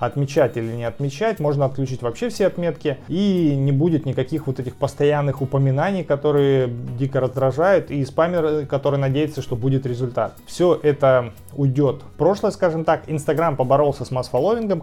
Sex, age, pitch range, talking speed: male, 20-39, 125-155 Hz, 150 wpm